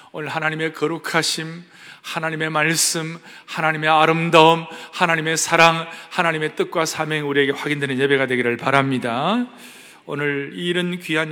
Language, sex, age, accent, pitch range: Korean, male, 40-59, native, 145-180 Hz